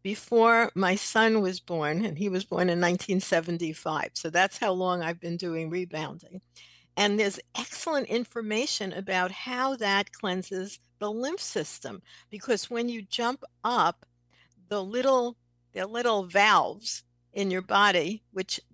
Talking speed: 140 wpm